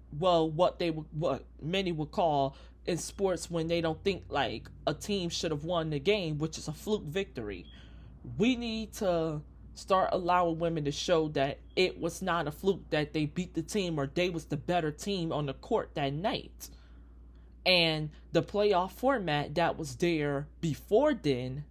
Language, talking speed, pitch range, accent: English, 180 wpm, 150-185 Hz, American